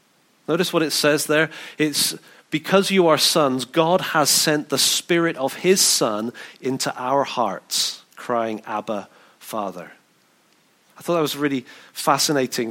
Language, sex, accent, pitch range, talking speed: English, male, British, 120-150 Hz, 145 wpm